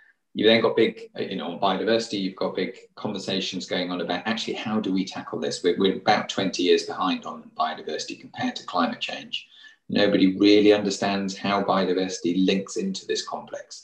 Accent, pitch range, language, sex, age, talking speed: British, 95-115 Hz, English, male, 30-49, 180 wpm